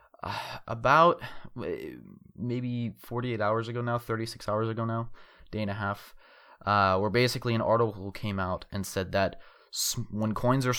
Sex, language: male, English